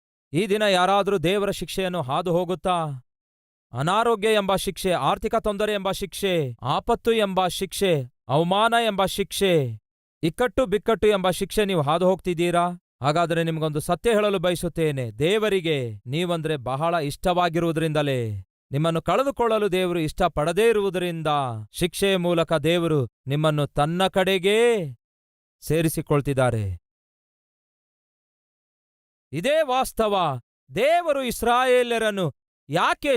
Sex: male